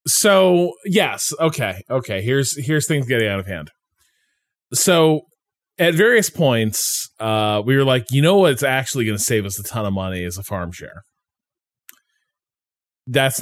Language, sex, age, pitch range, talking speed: English, male, 20-39, 100-145 Hz, 160 wpm